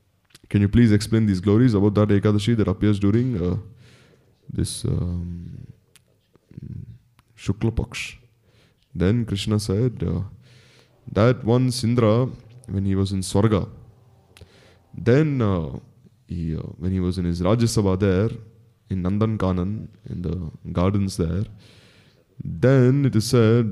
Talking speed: 130 wpm